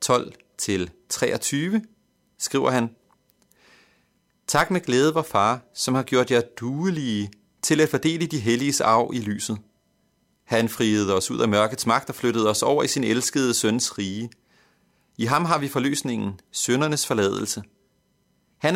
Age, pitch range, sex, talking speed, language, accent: 30-49, 110-150 Hz, male, 145 wpm, Danish, native